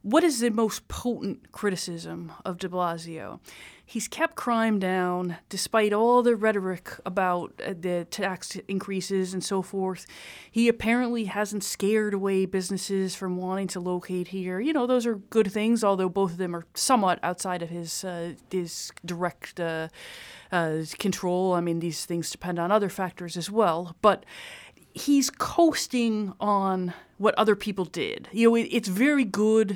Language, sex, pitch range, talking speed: English, female, 180-215 Hz, 160 wpm